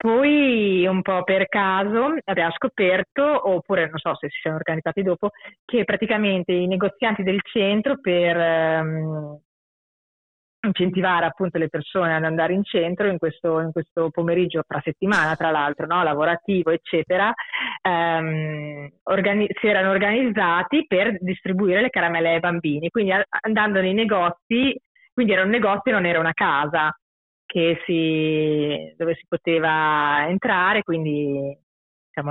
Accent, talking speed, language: native, 135 wpm, Italian